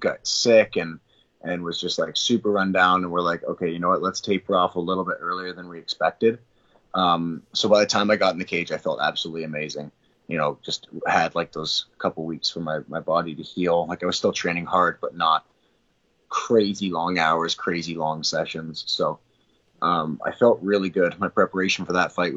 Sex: male